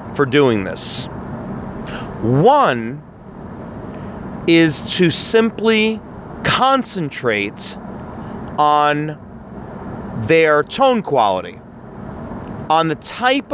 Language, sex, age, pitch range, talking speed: English, male, 40-59, 130-185 Hz, 65 wpm